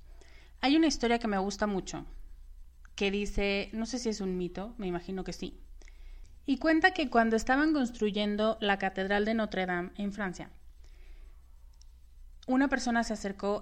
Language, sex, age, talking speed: Spanish, female, 30-49, 155 wpm